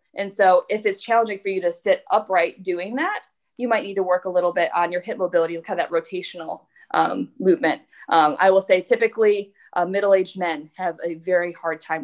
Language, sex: English, female